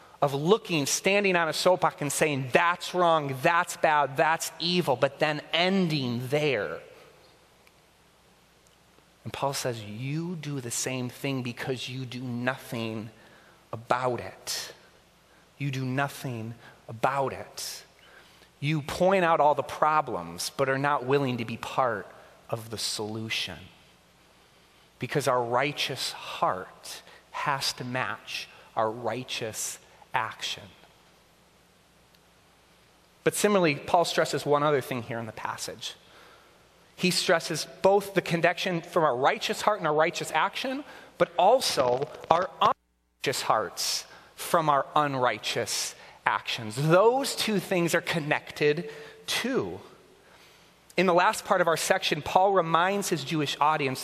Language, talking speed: English, 125 wpm